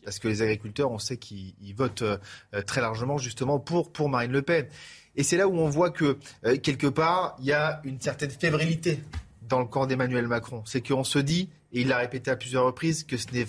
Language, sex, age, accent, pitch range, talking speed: French, male, 30-49, French, 135-165 Hz, 225 wpm